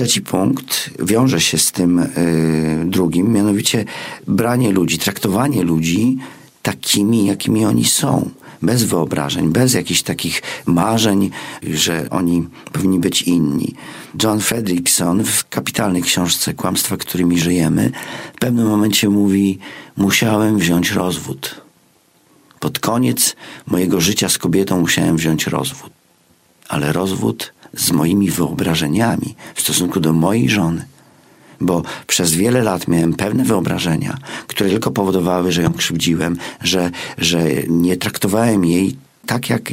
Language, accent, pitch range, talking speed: English, Polish, 85-110 Hz, 120 wpm